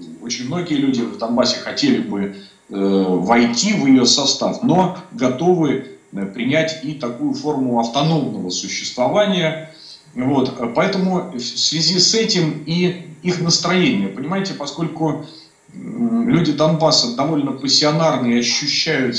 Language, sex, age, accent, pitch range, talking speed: Russian, male, 40-59, native, 120-180 Hz, 105 wpm